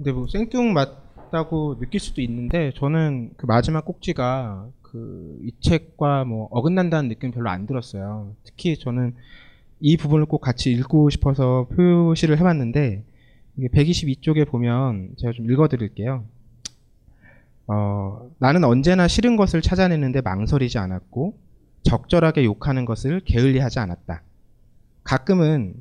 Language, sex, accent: Korean, male, native